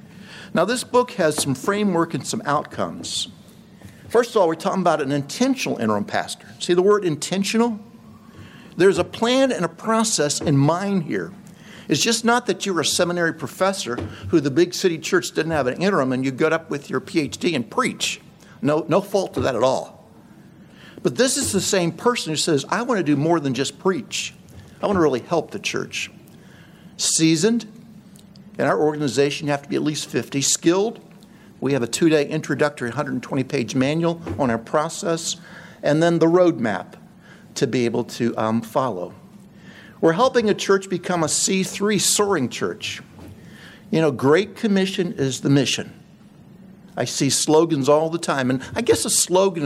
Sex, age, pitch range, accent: male, 60-79, 145-195 Hz, American